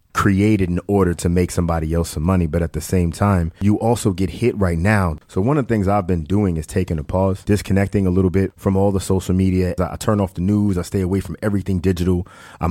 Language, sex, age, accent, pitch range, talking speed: English, male, 30-49, American, 85-95 Hz, 250 wpm